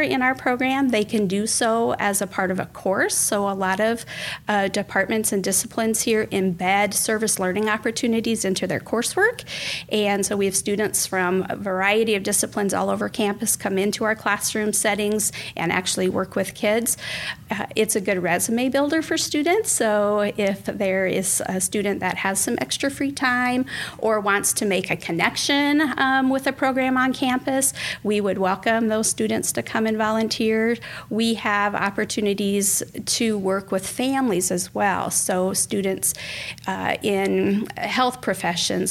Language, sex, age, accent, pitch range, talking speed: English, female, 40-59, American, 190-230 Hz, 165 wpm